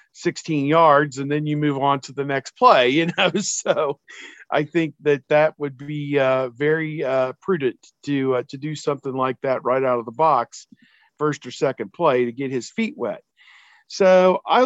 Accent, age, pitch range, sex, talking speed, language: American, 50-69, 135-160 Hz, male, 190 wpm, English